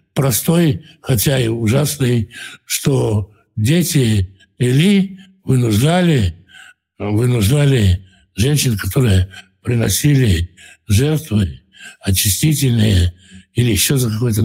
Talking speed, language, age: 75 wpm, Russian, 60-79